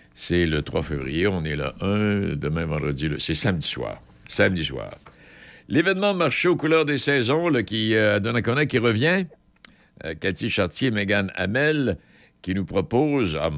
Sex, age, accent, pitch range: male, 60-79, French, 75-105 Hz